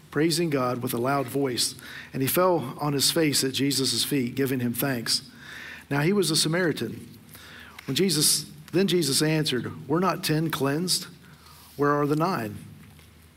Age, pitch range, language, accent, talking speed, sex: 50-69, 125-150 Hz, English, American, 165 wpm, male